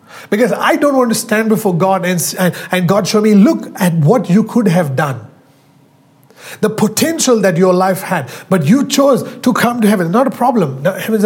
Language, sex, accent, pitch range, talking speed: English, male, Indian, 190-250 Hz, 195 wpm